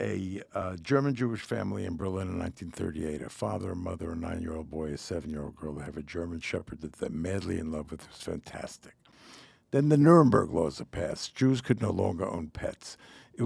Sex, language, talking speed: male, English, 190 wpm